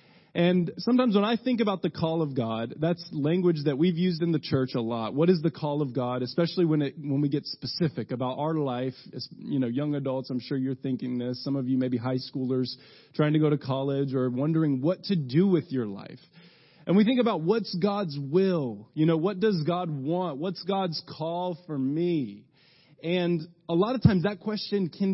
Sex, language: male, English